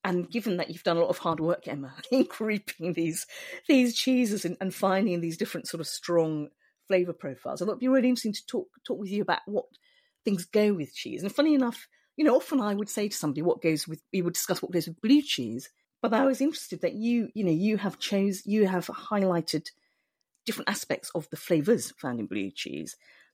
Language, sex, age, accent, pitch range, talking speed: English, female, 40-59, British, 175-265 Hz, 230 wpm